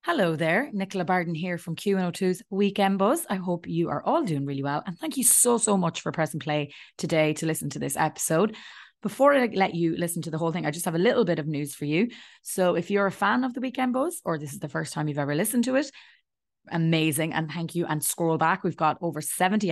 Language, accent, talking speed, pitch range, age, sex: English, Irish, 255 wpm, 150-200 Hz, 20-39, female